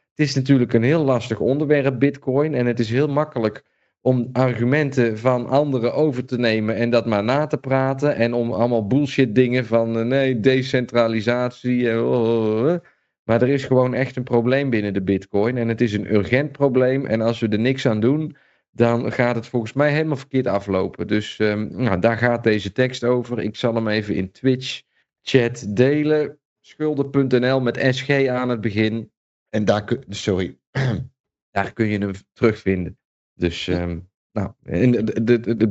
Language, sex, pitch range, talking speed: Dutch, male, 115-135 Hz, 165 wpm